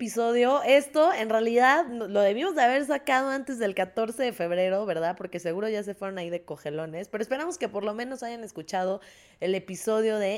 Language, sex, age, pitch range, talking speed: Spanish, female, 20-39, 185-260 Hz, 195 wpm